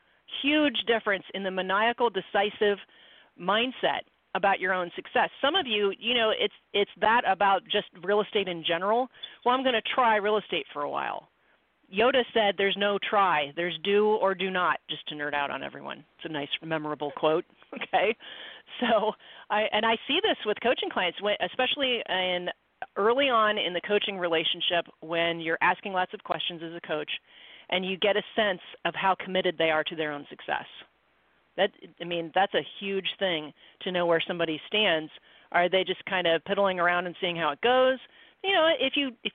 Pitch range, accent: 175-225 Hz, American